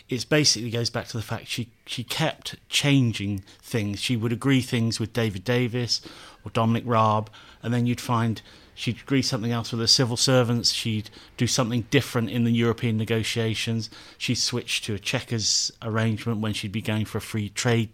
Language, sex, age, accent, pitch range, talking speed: English, male, 40-59, British, 110-130 Hz, 185 wpm